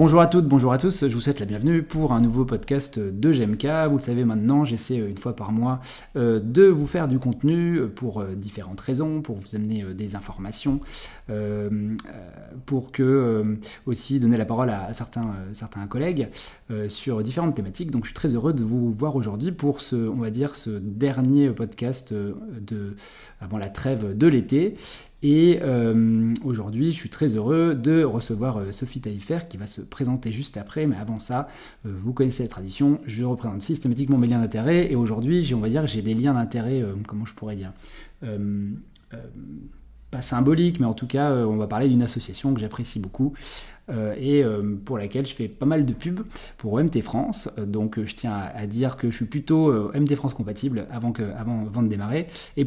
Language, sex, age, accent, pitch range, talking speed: French, male, 20-39, French, 110-140 Hz, 200 wpm